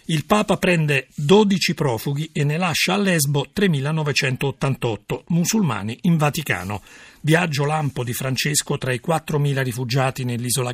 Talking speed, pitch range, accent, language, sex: 130 wpm, 130-180 Hz, native, Italian, male